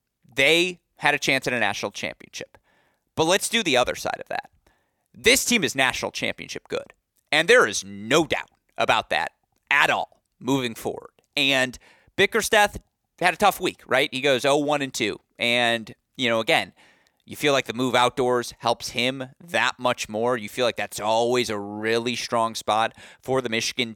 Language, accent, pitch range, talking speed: English, American, 115-145 Hz, 180 wpm